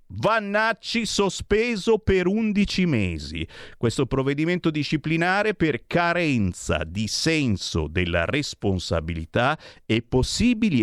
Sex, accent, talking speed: male, native, 90 wpm